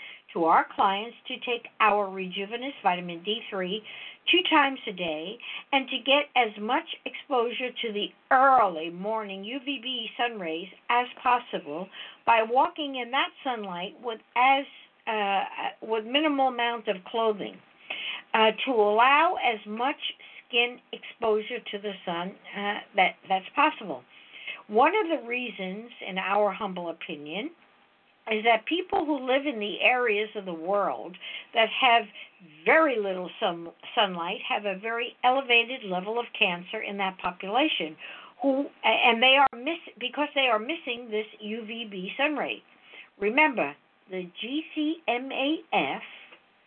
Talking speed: 135 wpm